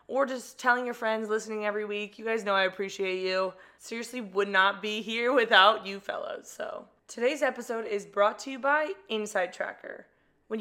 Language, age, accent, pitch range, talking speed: English, 20-39, American, 195-225 Hz, 185 wpm